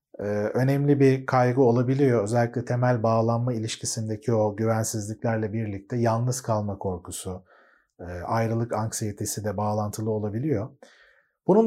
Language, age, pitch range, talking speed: Turkish, 40-59, 110-150 Hz, 105 wpm